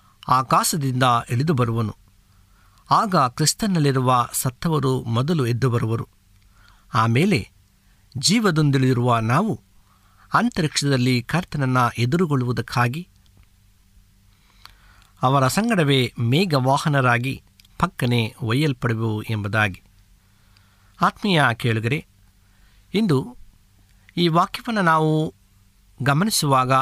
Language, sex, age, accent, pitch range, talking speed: Kannada, male, 50-69, native, 100-155 Hz, 65 wpm